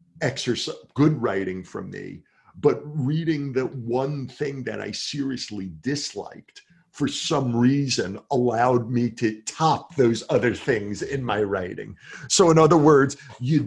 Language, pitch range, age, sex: English, 120-150 Hz, 50-69, male